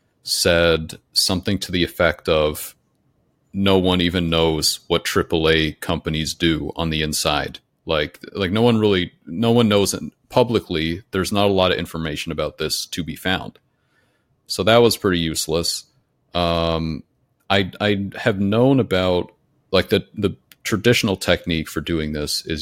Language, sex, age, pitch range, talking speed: English, male, 40-59, 80-100 Hz, 155 wpm